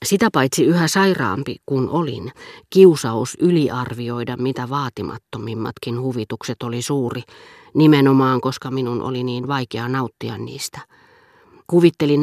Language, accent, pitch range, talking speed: Finnish, native, 120-145 Hz, 110 wpm